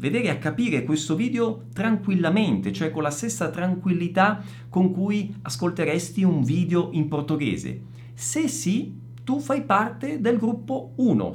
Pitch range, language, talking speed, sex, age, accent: 145-220 Hz, Italian, 140 wpm, male, 50-69, native